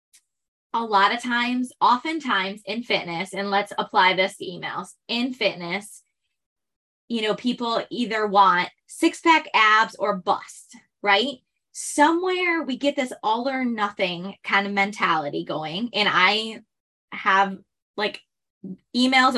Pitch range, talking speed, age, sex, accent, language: 195-255 Hz, 130 wpm, 20-39, female, American, English